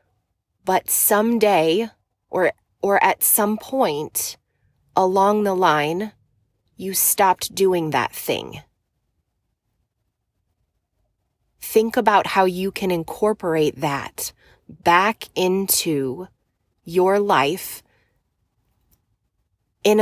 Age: 20-39